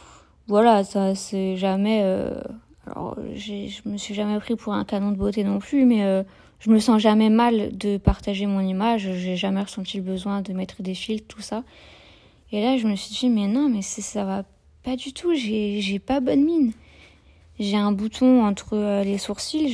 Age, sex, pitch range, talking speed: 20-39, female, 200-235 Hz, 200 wpm